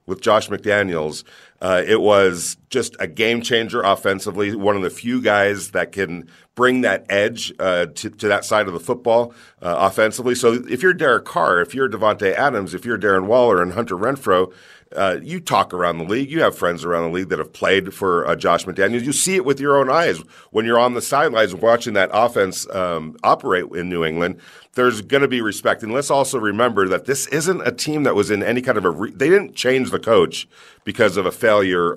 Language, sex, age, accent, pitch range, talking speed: English, male, 50-69, American, 95-125 Hz, 220 wpm